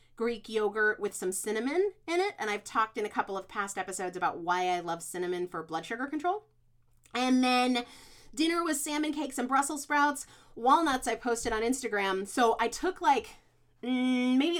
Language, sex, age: English, female, 30-49